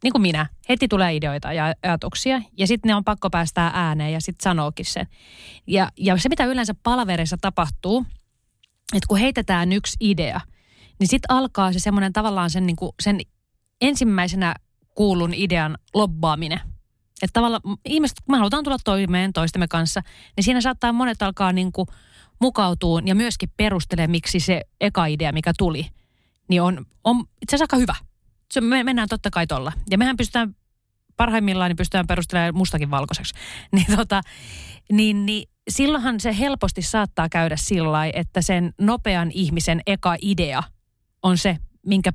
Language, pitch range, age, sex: Finnish, 170-215 Hz, 30-49, female